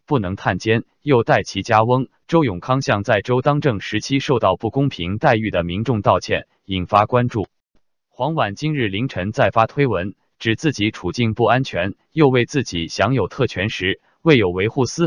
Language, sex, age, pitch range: Chinese, male, 20-39, 100-135 Hz